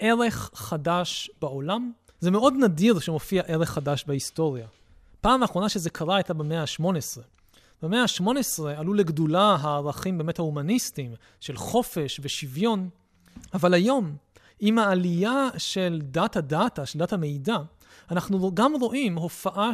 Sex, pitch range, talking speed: male, 150-225 Hz, 125 wpm